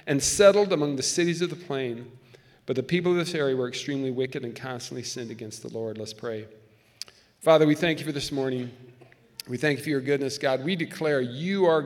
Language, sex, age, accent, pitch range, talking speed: English, male, 40-59, American, 130-180 Hz, 220 wpm